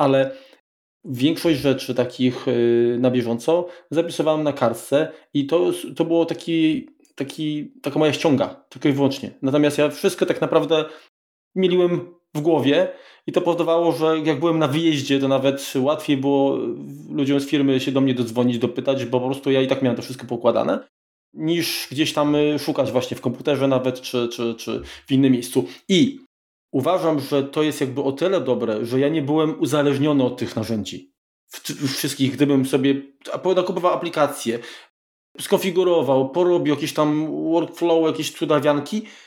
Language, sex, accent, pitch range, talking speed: Polish, male, native, 135-170 Hz, 160 wpm